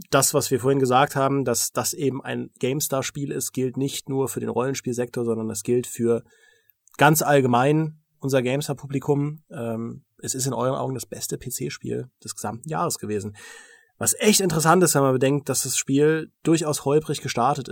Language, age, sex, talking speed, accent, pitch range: German, 30-49, male, 175 wpm, German, 120-150 Hz